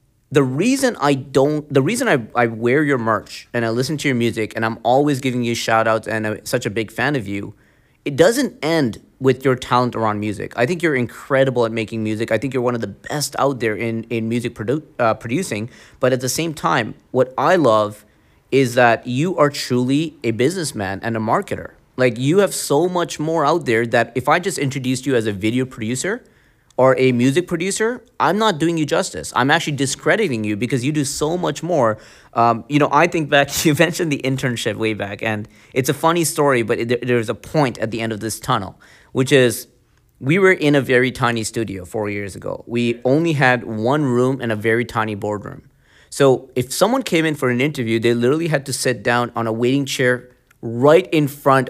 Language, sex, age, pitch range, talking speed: English, male, 30-49, 115-145 Hz, 215 wpm